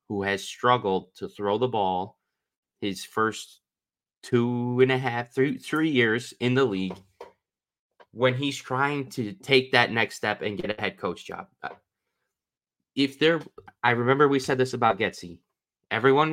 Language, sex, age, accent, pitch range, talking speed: English, male, 20-39, American, 100-130 Hz, 160 wpm